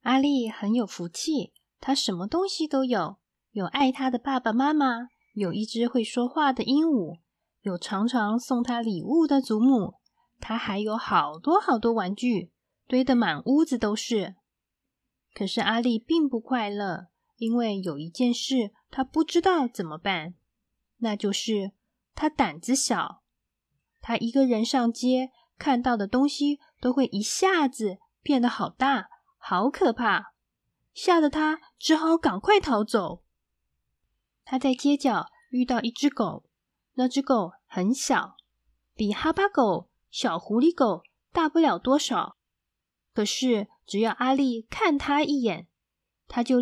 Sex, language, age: female, Chinese, 20-39